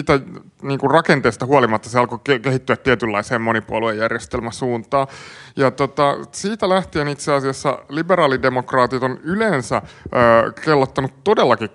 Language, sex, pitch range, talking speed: Finnish, male, 125-155 Hz, 100 wpm